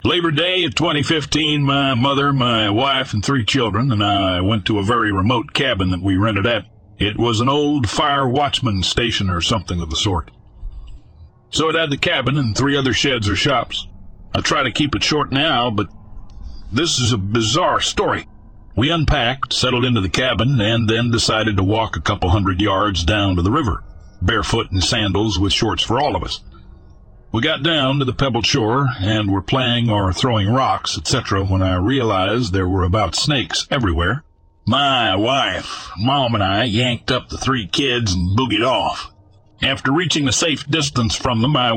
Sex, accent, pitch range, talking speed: male, American, 95-130 Hz, 185 wpm